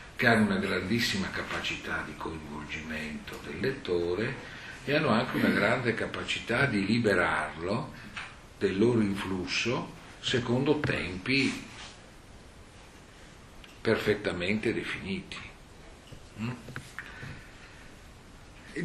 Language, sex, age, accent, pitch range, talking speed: Italian, male, 50-69, native, 95-130 Hz, 80 wpm